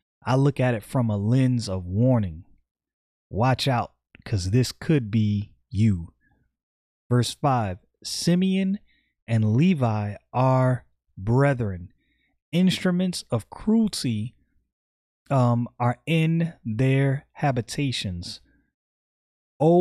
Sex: male